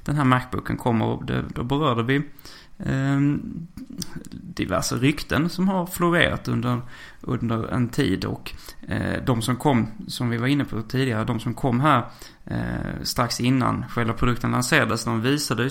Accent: native